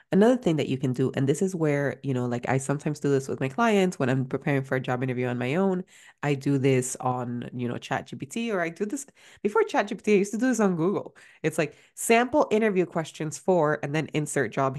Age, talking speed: 20-39, 250 wpm